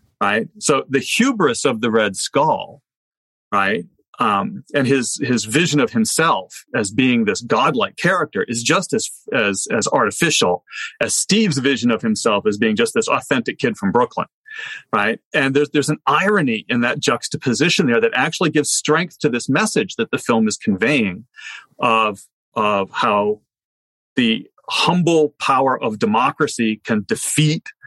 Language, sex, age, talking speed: English, male, 40-59, 155 wpm